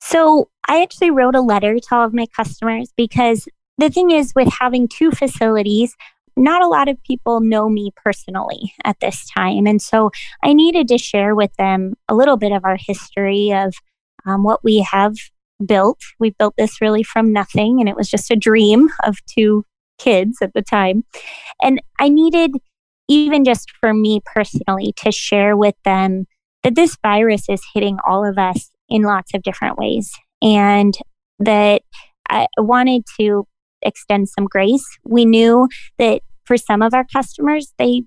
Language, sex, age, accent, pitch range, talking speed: English, female, 20-39, American, 200-255 Hz, 175 wpm